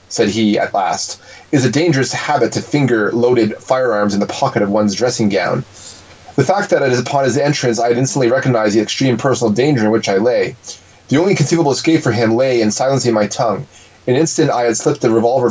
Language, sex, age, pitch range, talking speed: English, male, 30-49, 110-135 Hz, 220 wpm